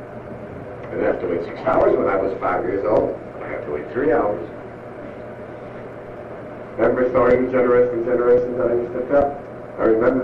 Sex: male